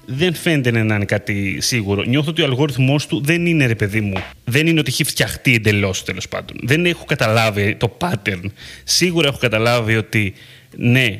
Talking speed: 180 wpm